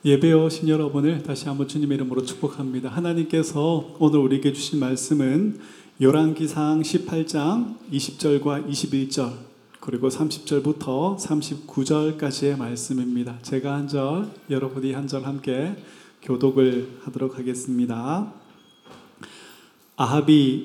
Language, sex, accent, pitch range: Korean, male, native, 130-150 Hz